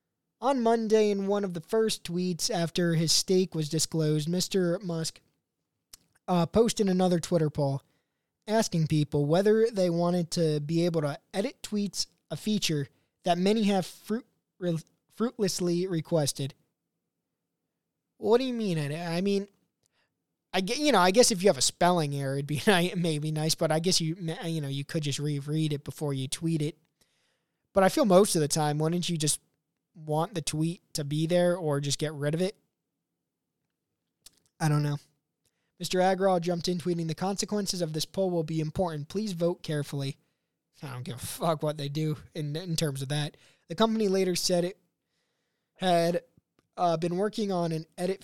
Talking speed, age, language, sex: 175 wpm, 20-39, English, male